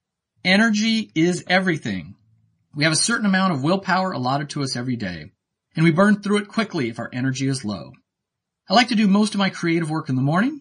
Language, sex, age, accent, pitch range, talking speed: English, male, 30-49, American, 130-195 Hz, 215 wpm